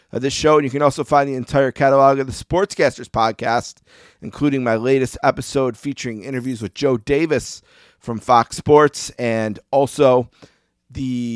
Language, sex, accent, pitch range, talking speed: English, male, American, 115-135 Hz, 160 wpm